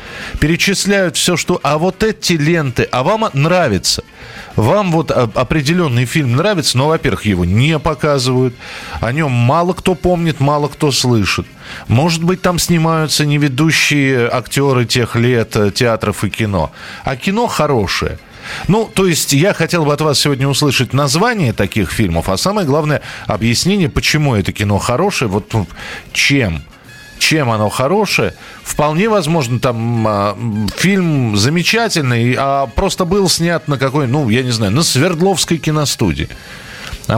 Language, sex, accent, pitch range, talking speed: Russian, male, native, 110-160 Hz, 140 wpm